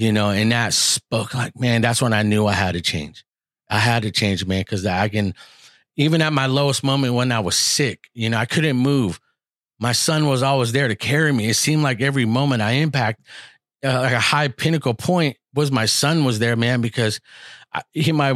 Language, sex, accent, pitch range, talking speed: English, male, American, 105-135 Hz, 220 wpm